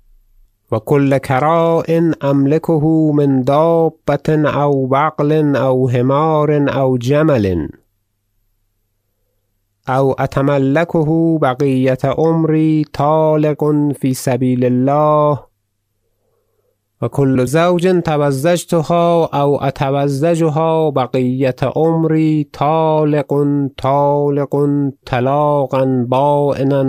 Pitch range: 110-145 Hz